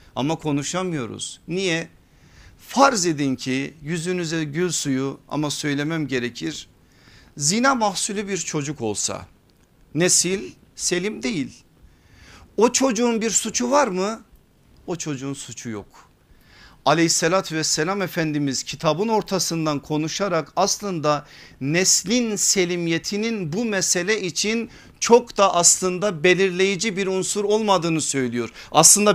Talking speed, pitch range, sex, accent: 105 wpm, 150-210 Hz, male, native